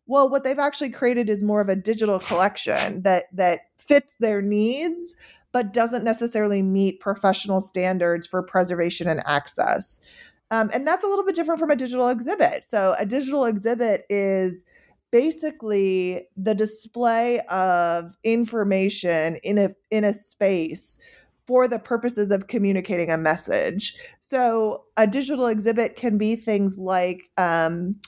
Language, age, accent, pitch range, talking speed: English, 20-39, American, 185-230 Hz, 145 wpm